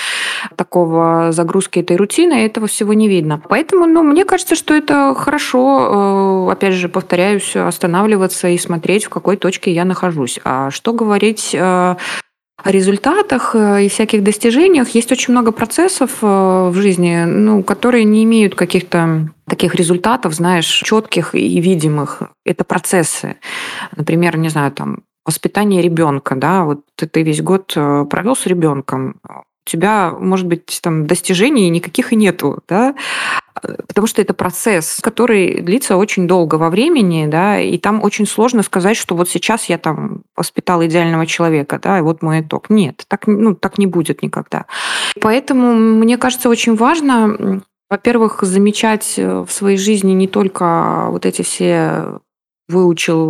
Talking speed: 145 wpm